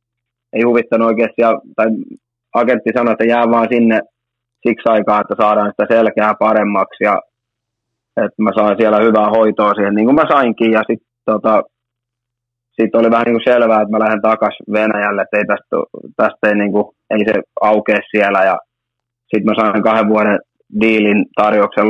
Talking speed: 170 wpm